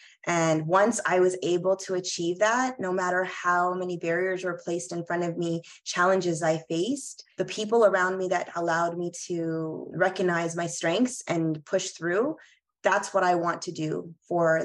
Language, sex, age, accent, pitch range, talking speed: English, female, 20-39, American, 165-185 Hz, 175 wpm